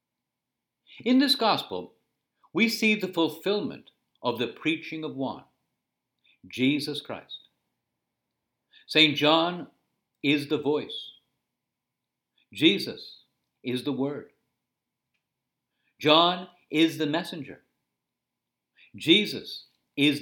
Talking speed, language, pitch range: 85 wpm, English, 135-175 Hz